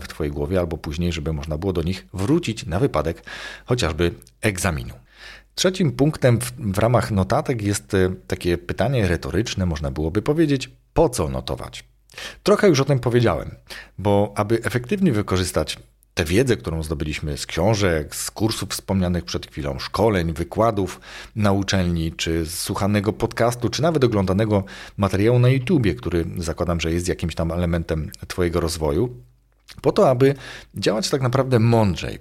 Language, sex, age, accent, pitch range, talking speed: Polish, male, 40-59, native, 90-115 Hz, 150 wpm